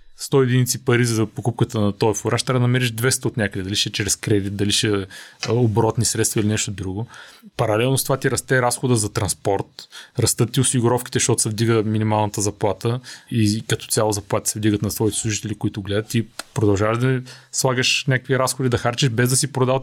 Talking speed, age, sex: 195 wpm, 20-39, male